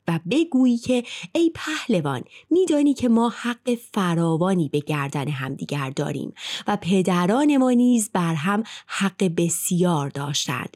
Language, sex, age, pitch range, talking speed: Persian, female, 30-49, 165-245 Hz, 130 wpm